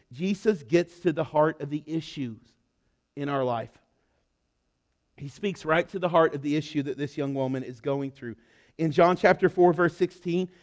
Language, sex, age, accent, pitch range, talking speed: English, male, 40-59, American, 155-200 Hz, 185 wpm